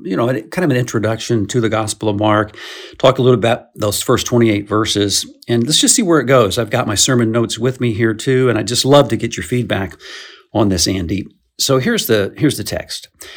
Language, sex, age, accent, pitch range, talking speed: English, male, 50-69, American, 100-125 Hz, 235 wpm